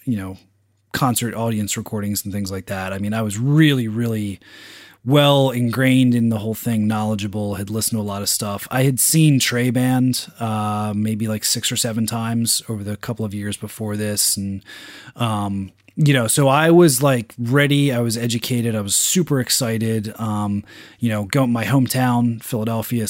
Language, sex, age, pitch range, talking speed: English, male, 20-39, 105-125 Hz, 185 wpm